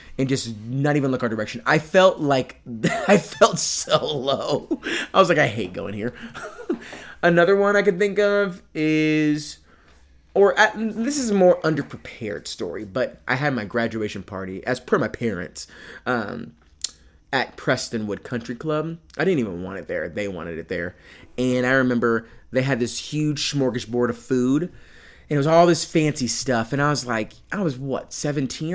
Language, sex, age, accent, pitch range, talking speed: English, male, 30-49, American, 115-170 Hz, 180 wpm